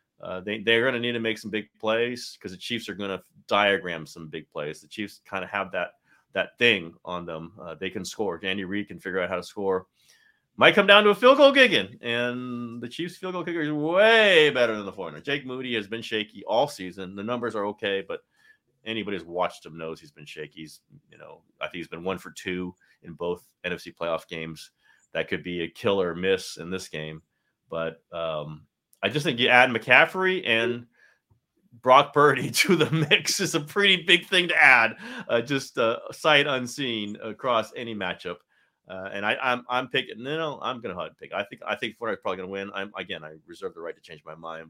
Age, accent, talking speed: 30-49, American, 225 wpm